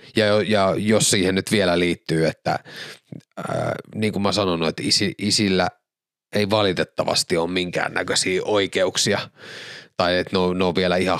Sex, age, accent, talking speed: male, 30-49, native, 155 wpm